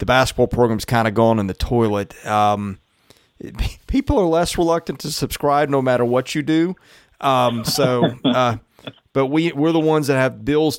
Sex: male